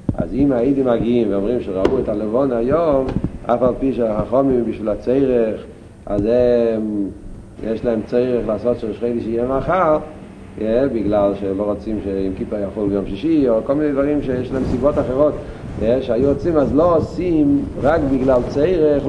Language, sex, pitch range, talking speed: Hebrew, male, 115-145 Hz, 150 wpm